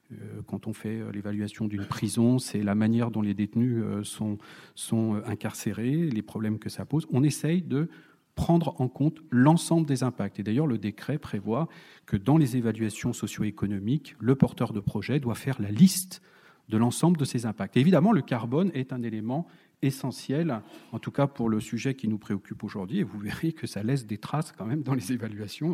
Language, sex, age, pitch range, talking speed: French, male, 40-59, 110-150 Hz, 190 wpm